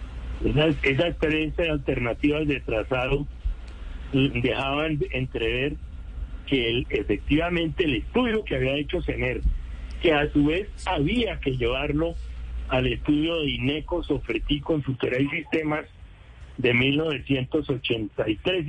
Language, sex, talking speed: Spanish, male, 110 wpm